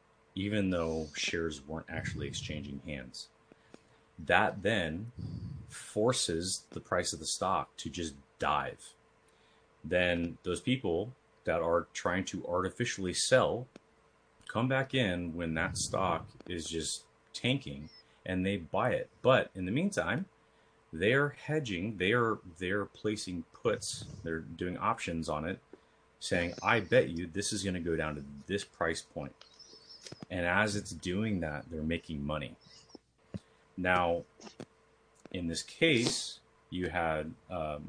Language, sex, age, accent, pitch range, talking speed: English, male, 30-49, American, 80-100 Hz, 135 wpm